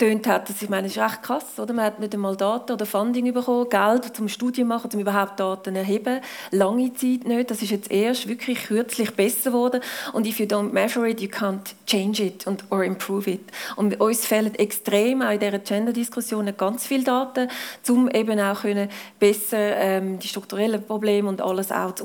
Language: German